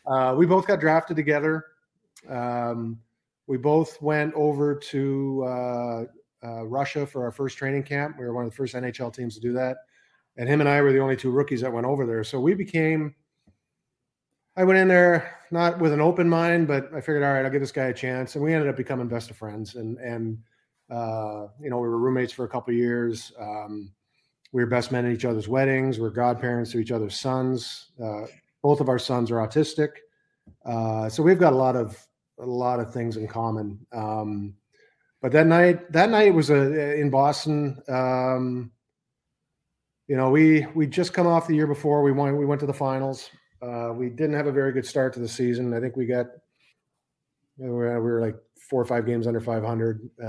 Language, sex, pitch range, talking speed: English, male, 120-150 Hz, 215 wpm